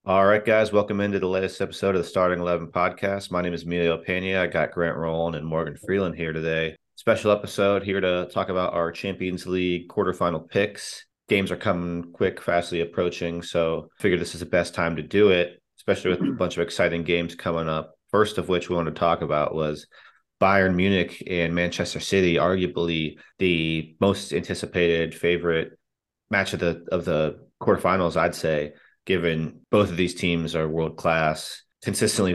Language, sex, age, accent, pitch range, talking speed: English, male, 30-49, American, 80-90 Hz, 180 wpm